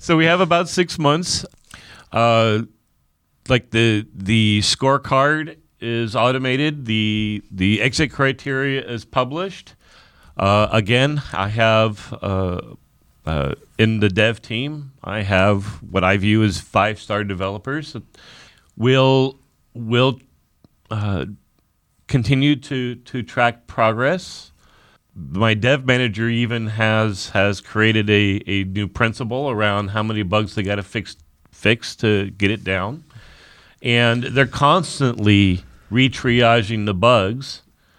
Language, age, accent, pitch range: English, 40-59, American, 105-130 Hz